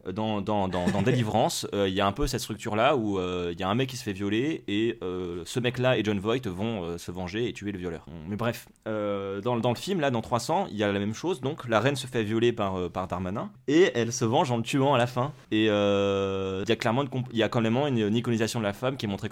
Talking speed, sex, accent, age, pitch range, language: 300 wpm, male, French, 20-39, 100-125 Hz, French